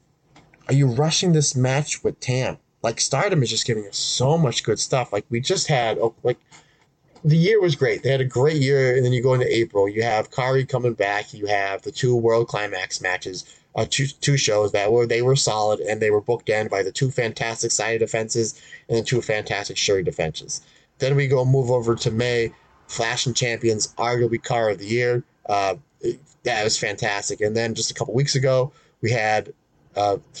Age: 30-49